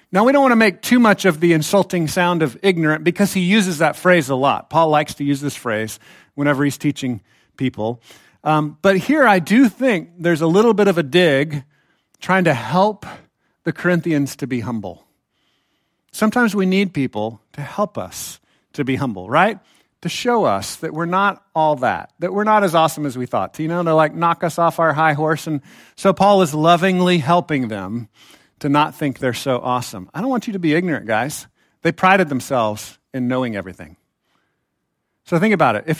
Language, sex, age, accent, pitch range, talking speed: English, male, 50-69, American, 140-195 Hz, 205 wpm